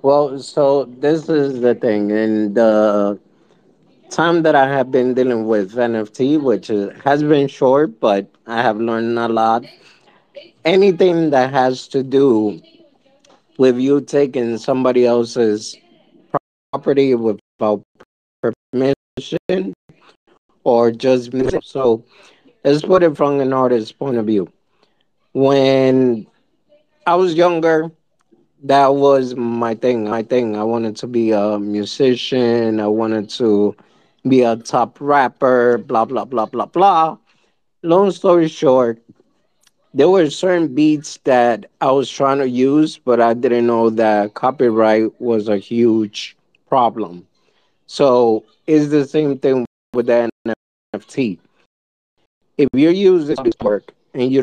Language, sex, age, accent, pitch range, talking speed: English, male, 20-39, American, 115-145 Hz, 130 wpm